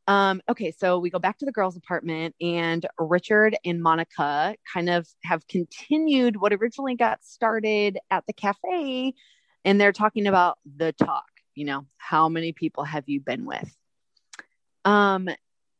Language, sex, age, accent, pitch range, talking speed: English, female, 30-49, American, 160-205 Hz, 155 wpm